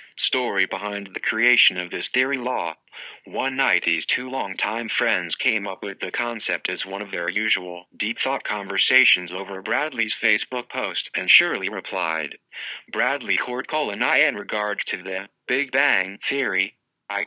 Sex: male